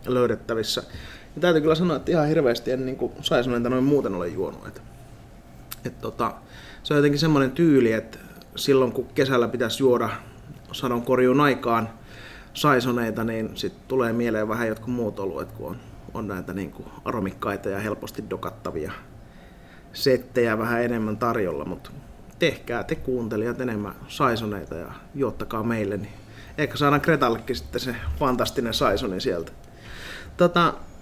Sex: male